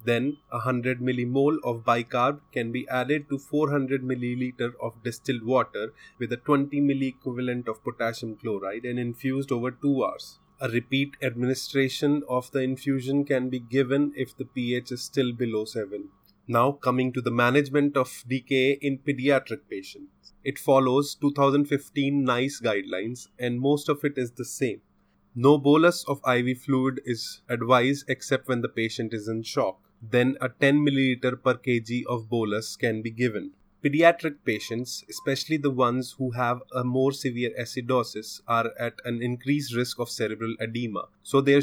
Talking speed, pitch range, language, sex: 160 wpm, 120-140 Hz, English, male